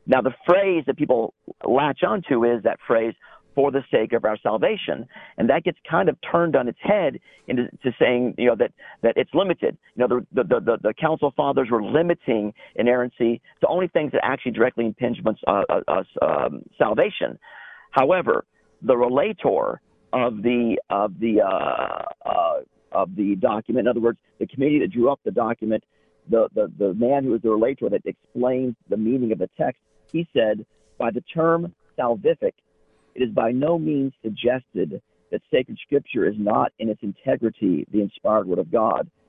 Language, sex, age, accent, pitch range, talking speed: English, male, 50-69, American, 110-135 Hz, 185 wpm